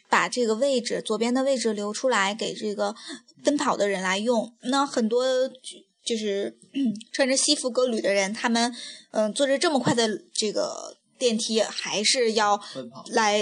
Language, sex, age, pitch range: Chinese, female, 20-39, 210-260 Hz